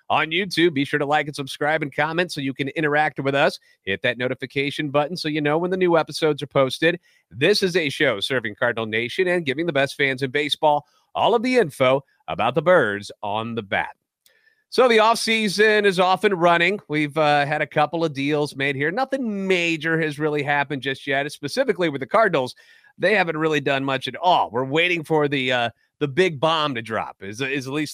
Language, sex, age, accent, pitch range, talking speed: English, male, 30-49, American, 140-175 Hz, 215 wpm